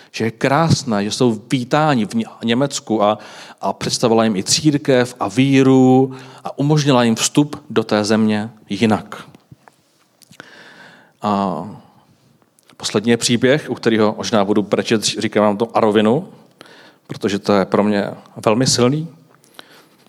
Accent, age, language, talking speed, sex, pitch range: native, 40-59, Czech, 125 wpm, male, 110-135 Hz